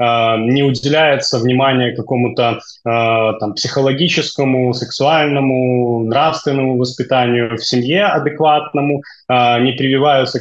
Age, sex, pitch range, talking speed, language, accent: 20-39, male, 120-145 Hz, 90 wpm, Russian, native